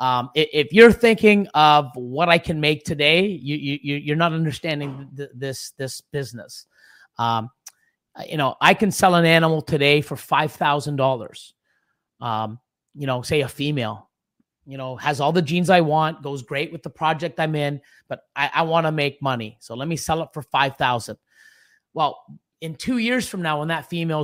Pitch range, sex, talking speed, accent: 145-185 Hz, male, 180 wpm, American